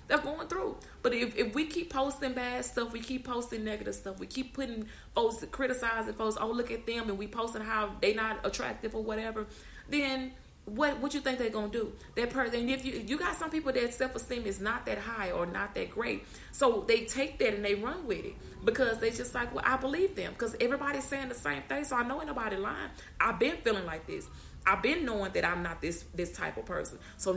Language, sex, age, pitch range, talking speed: English, female, 30-49, 205-280 Hz, 230 wpm